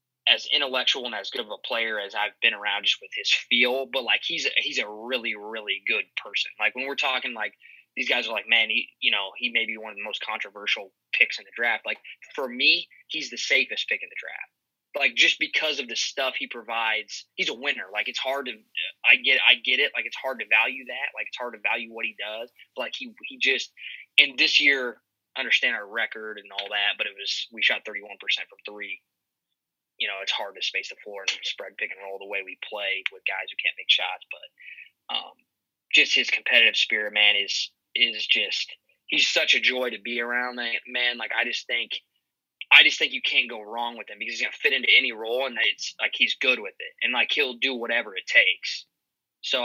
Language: English